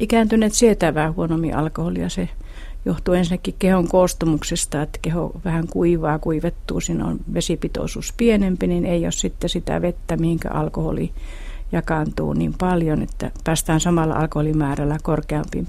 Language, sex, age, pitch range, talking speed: Finnish, female, 50-69, 145-185 Hz, 130 wpm